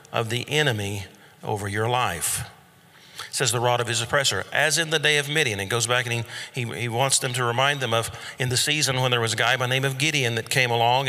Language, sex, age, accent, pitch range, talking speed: English, male, 50-69, American, 115-140 Hz, 255 wpm